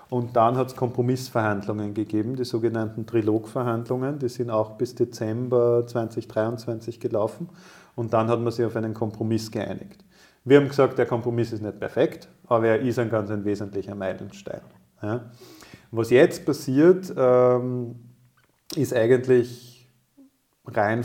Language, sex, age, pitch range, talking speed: German, male, 40-59, 110-125 Hz, 130 wpm